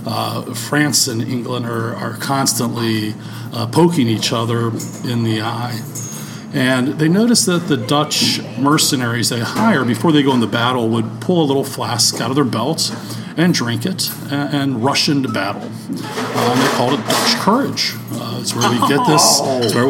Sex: male